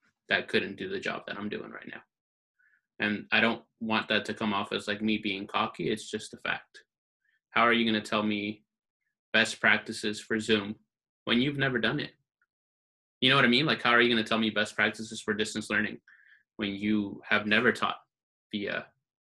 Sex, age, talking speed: male, 20-39, 210 wpm